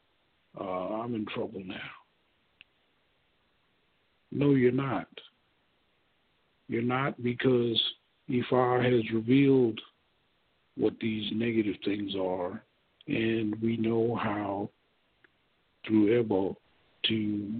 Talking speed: 90 wpm